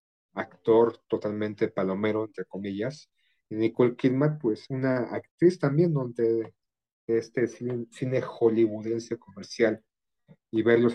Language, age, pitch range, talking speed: Spanish, 40-59, 105-115 Hz, 110 wpm